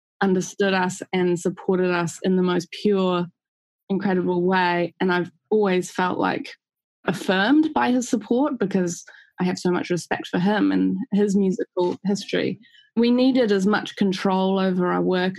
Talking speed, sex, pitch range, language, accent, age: 155 wpm, female, 180-205 Hz, English, Australian, 20-39